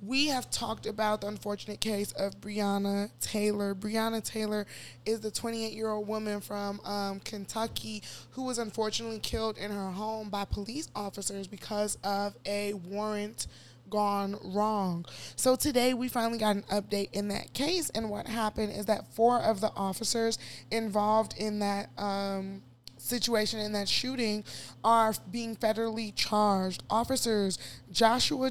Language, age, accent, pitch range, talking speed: English, 20-39, American, 200-230 Hz, 140 wpm